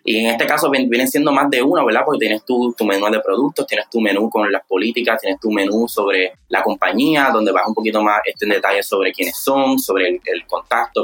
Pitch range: 105-140 Hz